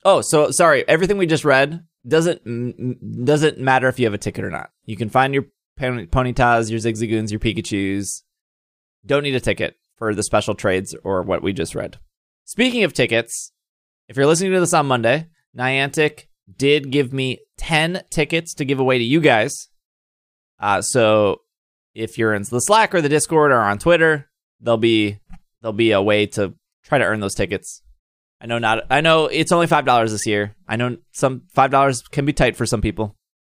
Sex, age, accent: male, 20-39, American